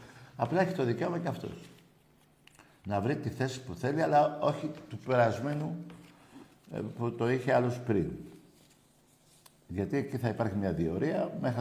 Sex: male